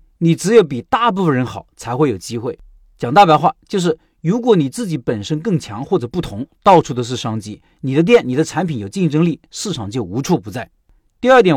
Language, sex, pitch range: Chinese, male, 120-175 Hz